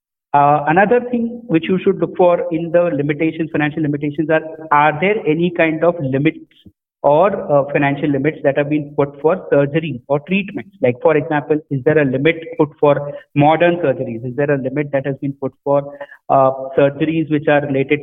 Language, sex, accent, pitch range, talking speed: English, male, Indian, 140-175 Hz, 190 wpm